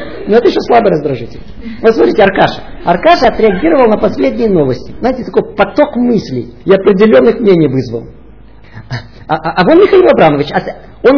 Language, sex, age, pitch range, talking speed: Russian, male, 50-69, 165-245 Hz, 155 wpm